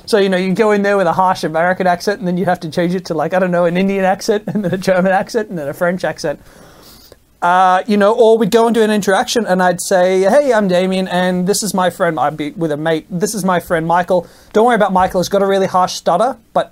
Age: 30-49